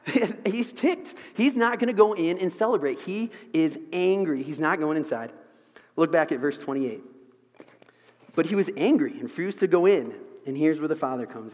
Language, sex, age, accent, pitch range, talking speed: English, male, 30-49, American, 145-205 Hz, 190 wpm